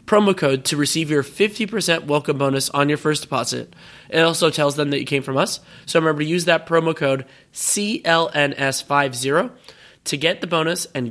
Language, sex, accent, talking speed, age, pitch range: English, male, American, 185 wpm, 20-39, 130-155 Hz